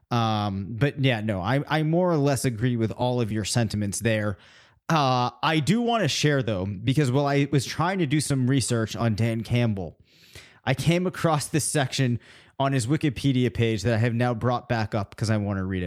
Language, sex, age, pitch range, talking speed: English, male, 30-49, 110-145 Hz, 210 wpm